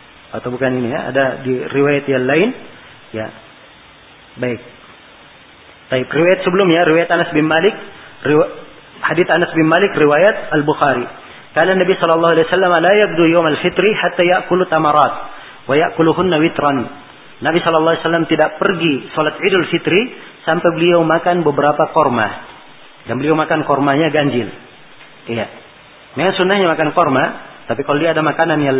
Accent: native